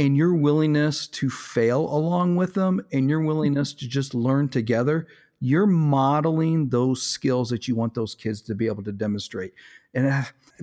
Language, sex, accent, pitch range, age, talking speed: English, male, American, 115-140 Hz, 40-59, 175 wpm